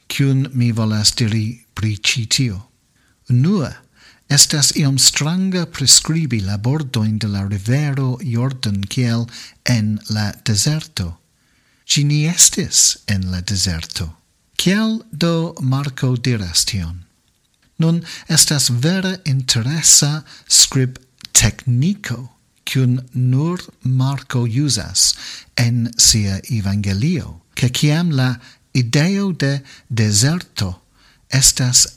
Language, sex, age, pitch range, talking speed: English, male, 50-69, 110-145 Hz, 95 wpm